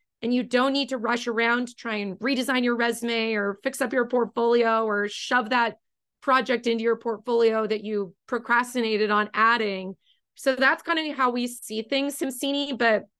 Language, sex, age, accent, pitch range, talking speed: English, female, 30-49, American, 210-250 Hz, 180 wpm